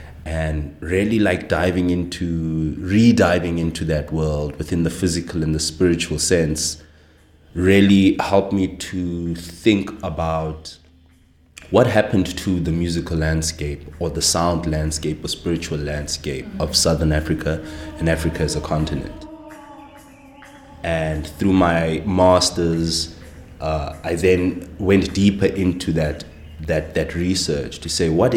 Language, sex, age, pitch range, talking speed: English, male, 30-49, 80-90 Hz, 125 wpm